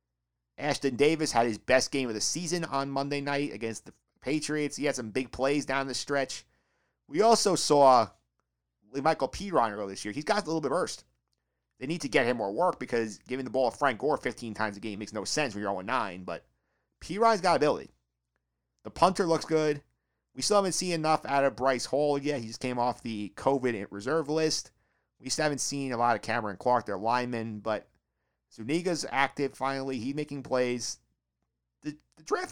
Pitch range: 100-150 Hz